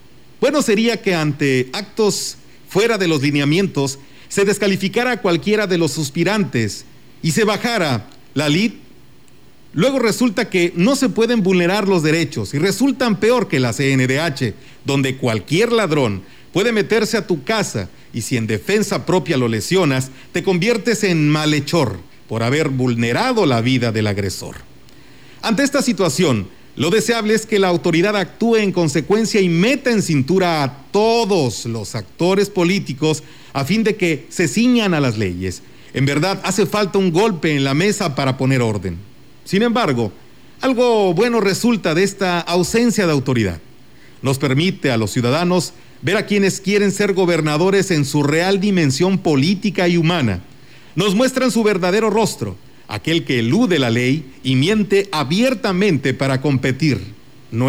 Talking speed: 155 wpm